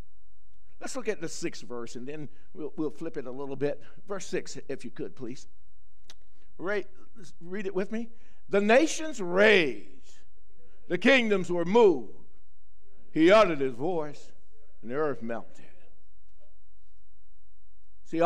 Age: 60-79